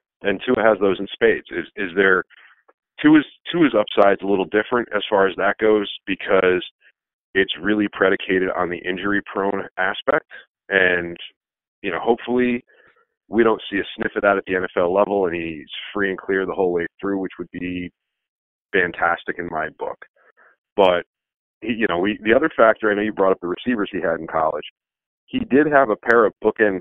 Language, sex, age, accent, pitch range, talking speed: English, male, 40-59, American, 90-125 Hz, 195 wpm